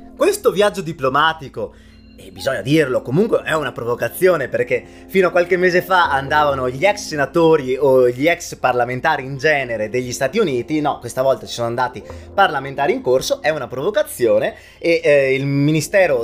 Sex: male